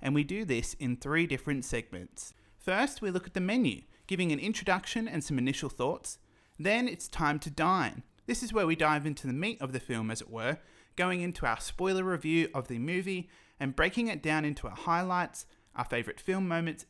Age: 30-49